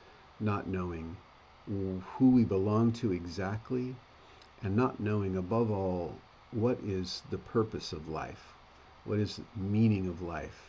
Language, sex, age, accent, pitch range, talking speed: English, male, 50-69, American, 90-115 Hz, 135 wpm